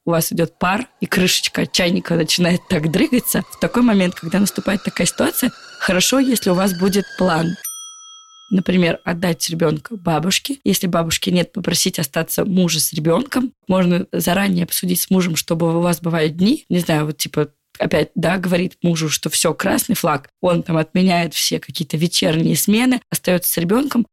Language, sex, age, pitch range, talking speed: Russian, female, 20-39, 170-200 Hz, 165 wpm